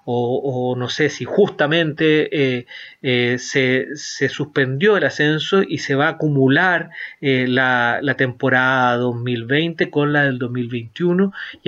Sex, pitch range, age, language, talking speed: male, 130-160 Hz, 30-49, Spanish, 145 wpm